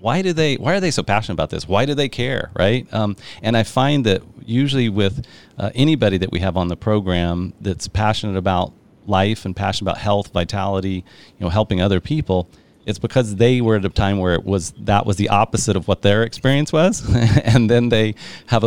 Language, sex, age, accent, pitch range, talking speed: English, male, 40-59, American, 100-130 Hz, 215 wpm